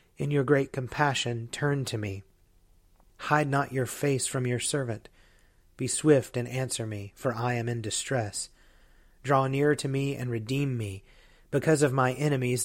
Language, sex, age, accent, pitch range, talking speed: English, male, 30-49, American, 110-130 Hz, 165 wpm